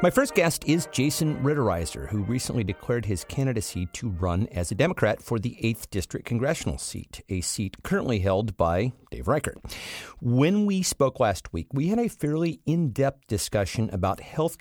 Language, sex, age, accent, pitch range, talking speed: English, male, 50-69, American, 90-120 Hz, 175 wpm